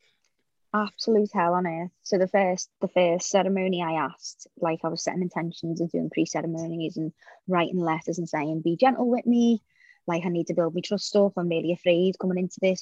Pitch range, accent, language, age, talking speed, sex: 170-195 Hz, British, English, 20-39, 200 wpm, female